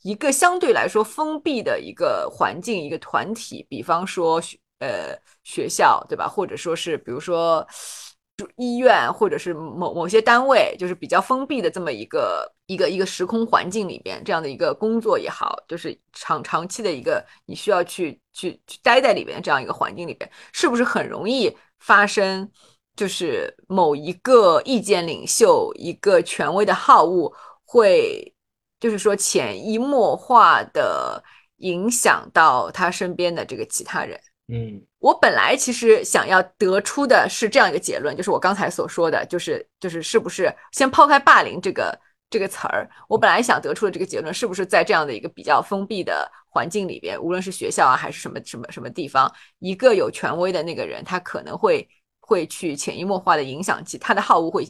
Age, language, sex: 20-39, Chinese, female